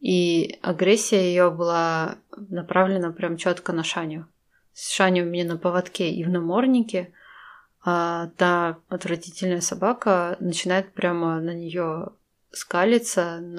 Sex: female